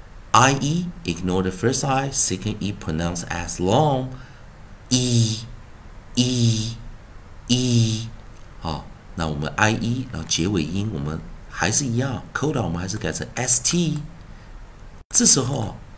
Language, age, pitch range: Chinese, 50-69, 95-120 Hz